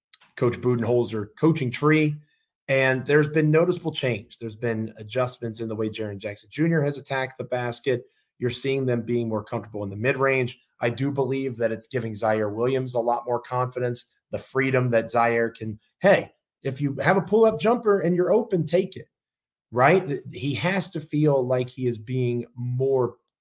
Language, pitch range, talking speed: English, 115-145 Hz, 180 wpm